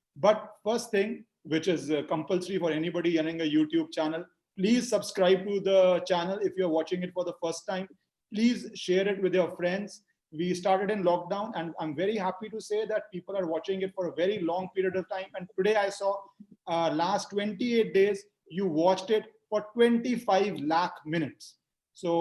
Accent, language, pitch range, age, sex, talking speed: native, Hindi, 170-200 Hz, 30-49, male, 190 wpm